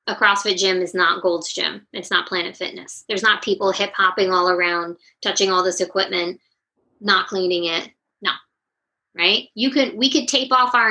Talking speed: 180 wpm